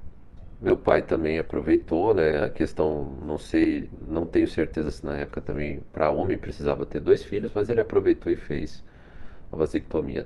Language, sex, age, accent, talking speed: Portuguese, male, 50-69, Brazilian, 170 wpm